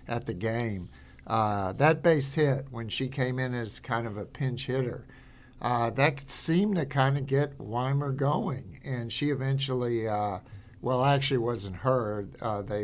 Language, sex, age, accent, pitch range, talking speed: English, male, 50-69, American, 105-130 Hz, 160 wpm